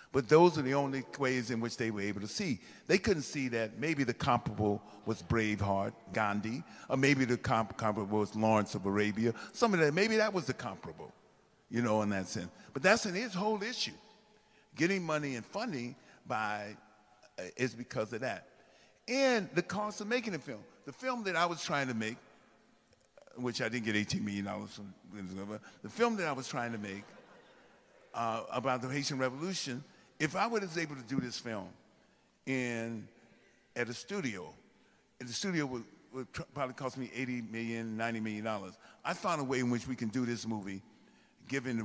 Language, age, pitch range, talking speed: English, 50-69, 115-150 Hz, 190 wpm